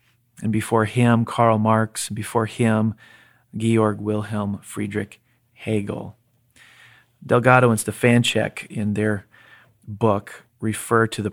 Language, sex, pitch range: English, male, 110-125 Hz